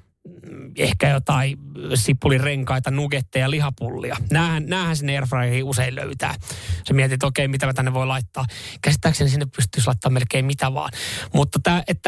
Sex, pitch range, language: male, 125-150 Hz, Finnish